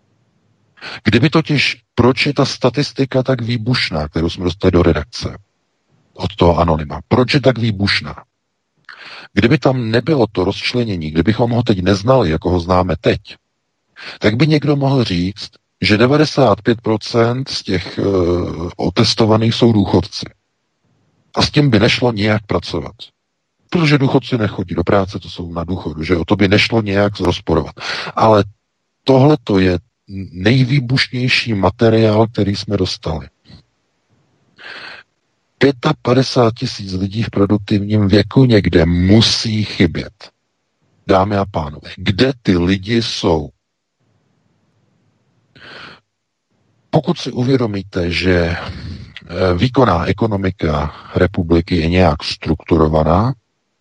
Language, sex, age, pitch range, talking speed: Czech, male, 50-69, 90-125 Hz, 115 wpm